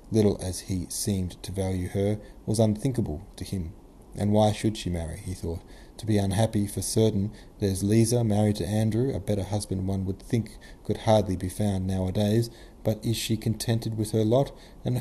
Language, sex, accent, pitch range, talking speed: English, male, Australian, 95-115 Hz, 190 wpm